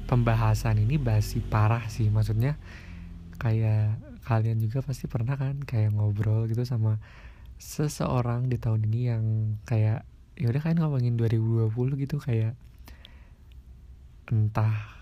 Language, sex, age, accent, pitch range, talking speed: Indonesian, male, 20-39, native, 85-115 Hz, 120 wpm